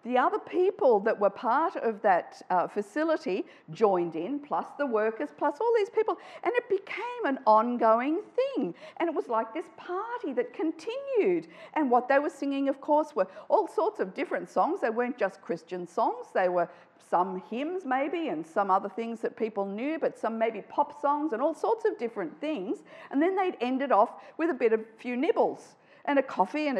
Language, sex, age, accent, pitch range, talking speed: English, female, 50-69, Australian, 225-330 Hz, 200 wpm